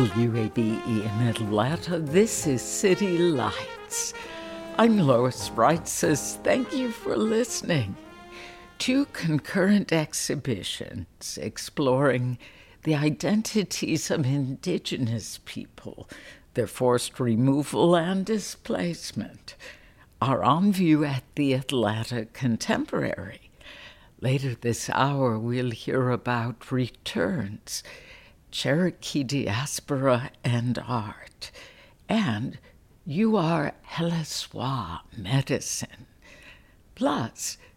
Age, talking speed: 60-79, 85 wpm